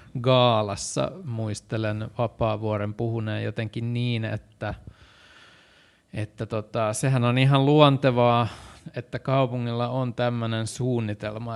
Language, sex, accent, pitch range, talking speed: Finnish, male, native, 110-130 Hz, 95 wpm